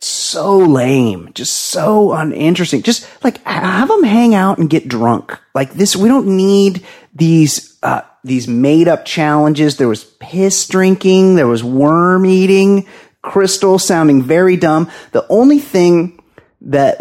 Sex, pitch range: male, 125-185 Hz